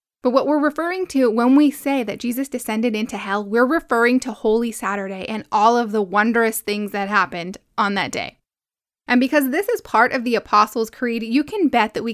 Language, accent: English, American